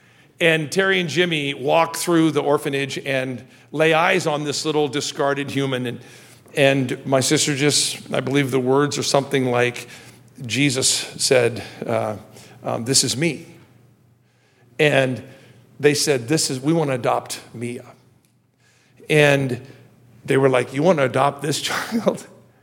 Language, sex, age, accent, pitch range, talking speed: English, male, 50-69, American, 125-155 Hz, 145 wpm